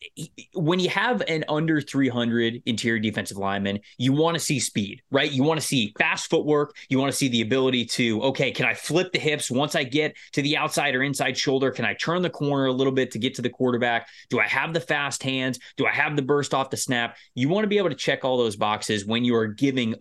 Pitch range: 120-150 Hz